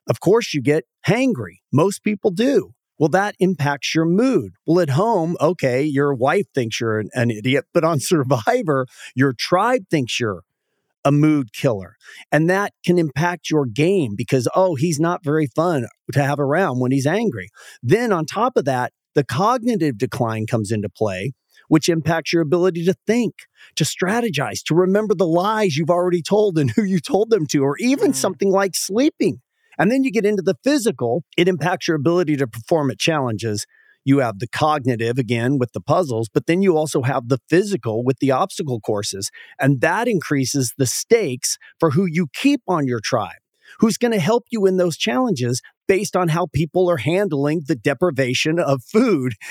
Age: 40-59